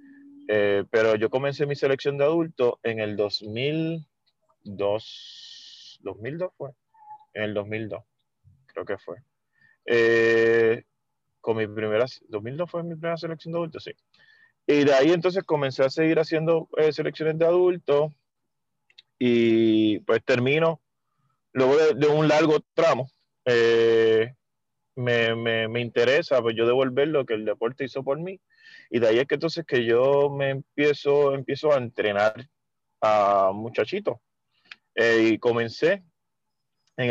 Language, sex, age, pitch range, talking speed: Spanish, male, 30-49, 115-165 Hz, 140 wpm